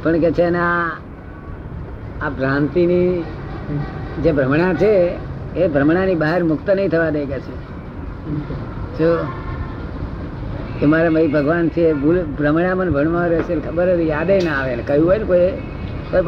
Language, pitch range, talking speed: Gujarati, 145-180 Hz, 95 wpm